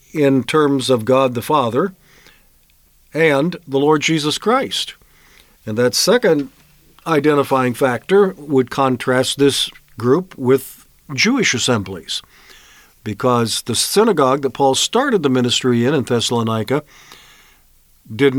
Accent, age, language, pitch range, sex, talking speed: American, 50-69, English, 125-165 Hz, male, 115 wpm